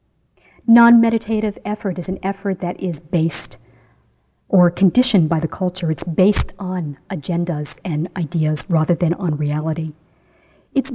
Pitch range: 160-205 Hz